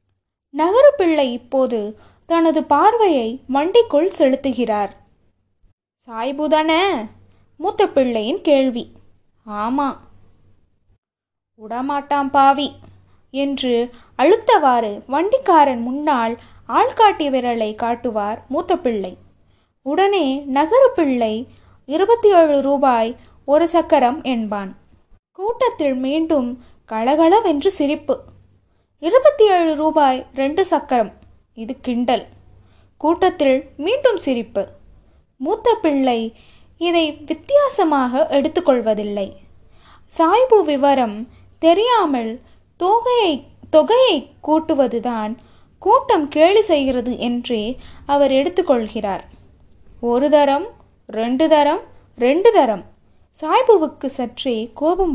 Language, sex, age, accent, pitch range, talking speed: Tamil, female, 20-39, native, 240-330 Hz, 75 wpm